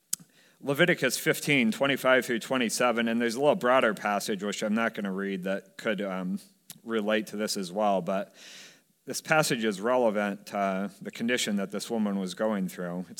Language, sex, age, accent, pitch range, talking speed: English, male, 40-59, American, 105-145 Hz, 190 wpm